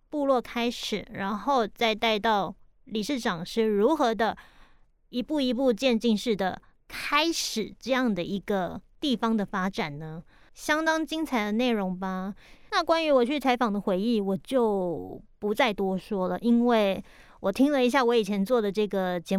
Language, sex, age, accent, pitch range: Chinese, female, 30-49, American, 200-265 Hz